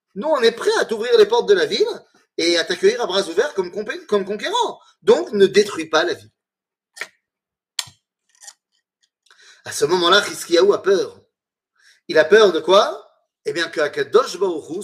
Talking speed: 175 wpm